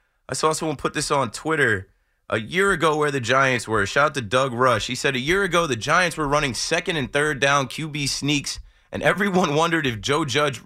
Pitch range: 125-175 Hz